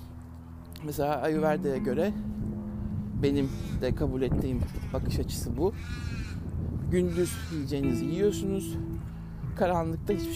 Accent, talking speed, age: native, 85 wpm, 60-79